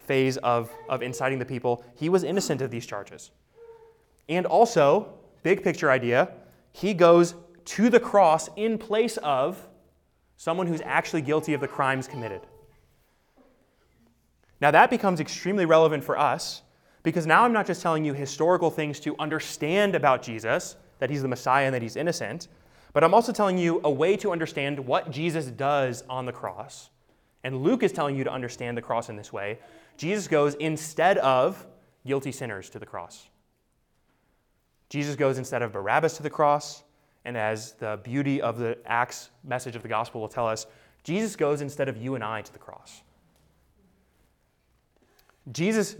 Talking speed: 170 wpm